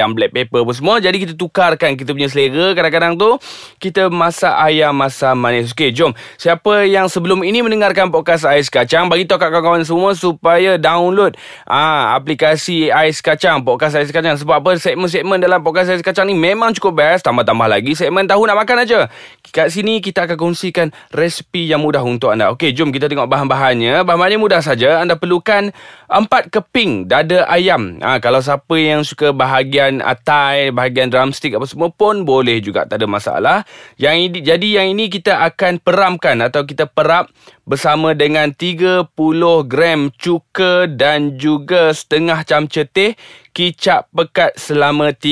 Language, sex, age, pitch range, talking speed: Malay, male, 20-39, 145-185 Hz, 165 wpm